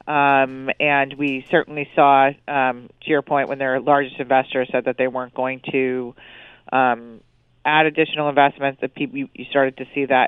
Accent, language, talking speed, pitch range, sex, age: American, English, 175 wpm, 130-145 Hz, female, 40-59